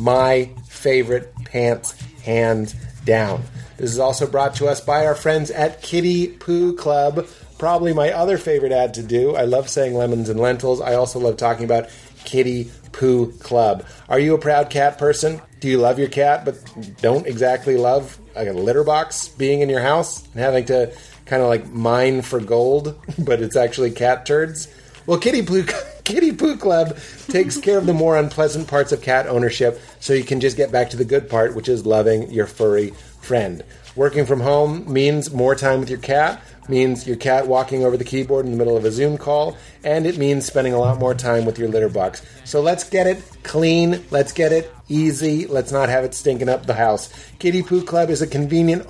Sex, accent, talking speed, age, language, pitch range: male, American, 205 wpm, 30-49, English, 125-155 Hz